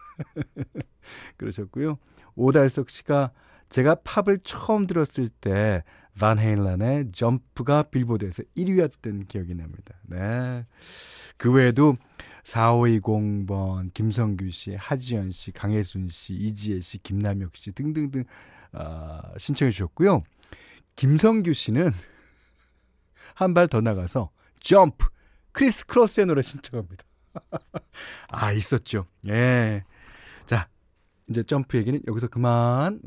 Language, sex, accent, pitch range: Korean, male, native, 100-145 Hz